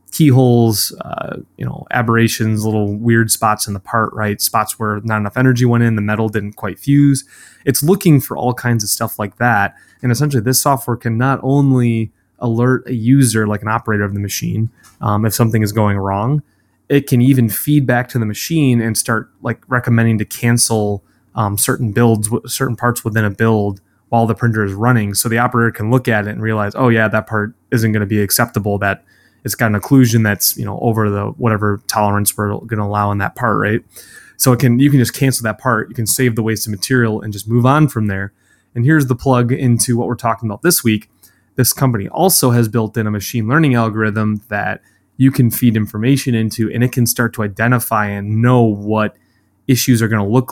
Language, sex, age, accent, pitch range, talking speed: English, male, 20-39, American, 105-125 Hz, 220 wpm